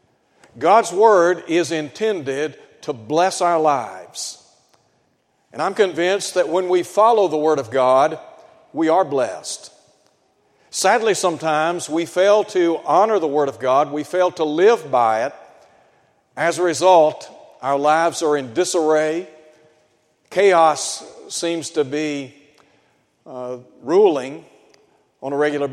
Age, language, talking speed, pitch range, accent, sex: 60-79, English, 130 wpm, 150-200 Hz, American, male